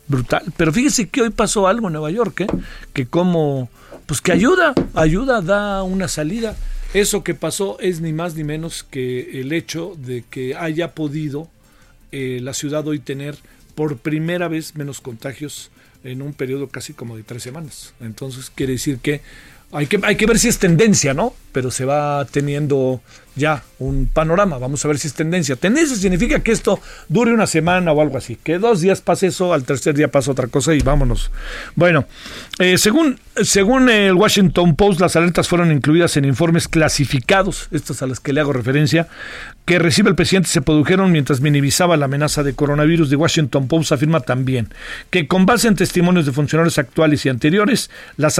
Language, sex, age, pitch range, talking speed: Spanish, male, 40-59, 145-190 Hz, 185 wpm